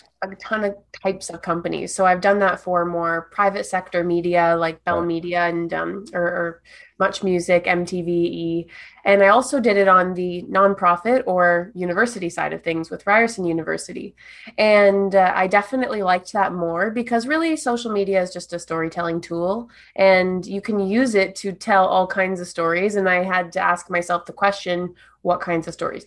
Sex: female